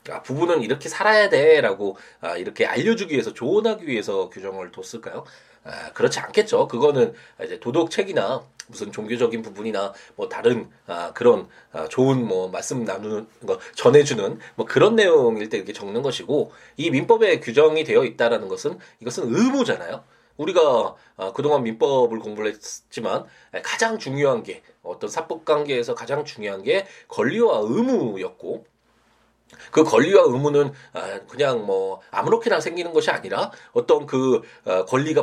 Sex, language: male, Korean